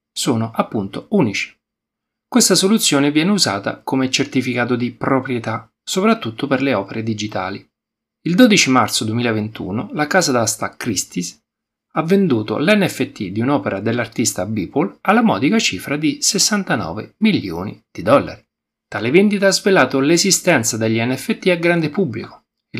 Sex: male